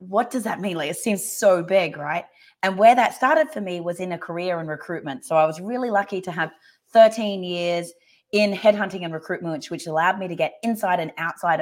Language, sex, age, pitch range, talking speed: English, female, 30-49, 165-200 Hz, 225 wpm